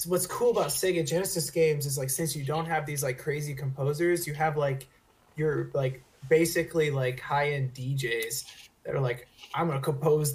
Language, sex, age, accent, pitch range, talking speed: English, male, 20-39, American, 130-160 Hz, 190 wpm